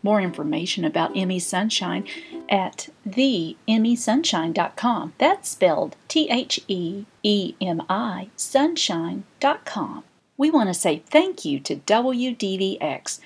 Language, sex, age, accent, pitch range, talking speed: English, female, 50-69, American, 185-275 Hz, 80 wpm